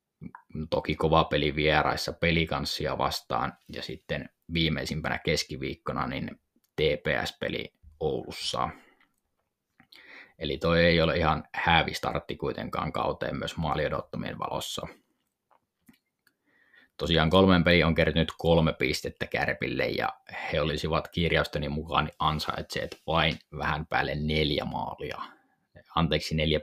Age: 20-39